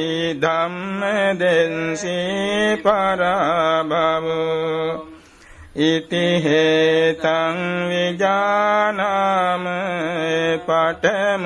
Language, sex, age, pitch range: Vietnamese, male, 60-79, 160-190 Hz